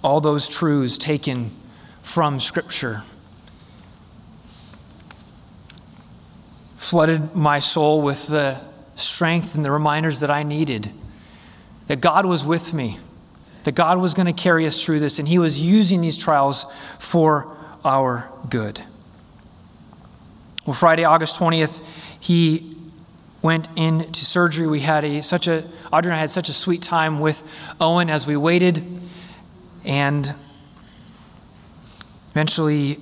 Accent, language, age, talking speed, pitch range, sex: American, English, 30-49, 120 wpm, 140-165 Hz, male